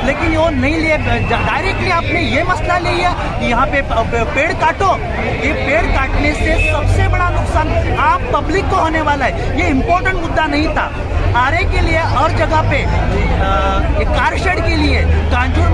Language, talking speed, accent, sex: Hindi, 155 wpm, native, male